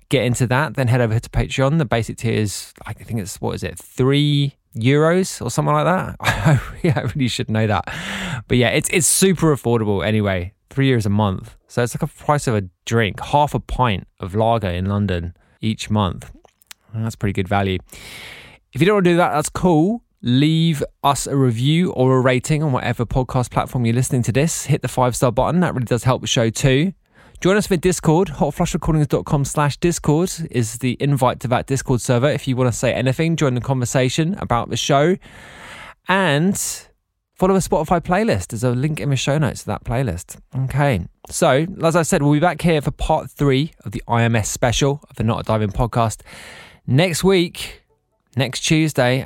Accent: British